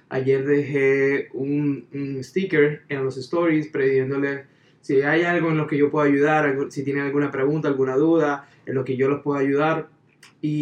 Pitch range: 135-170 Hz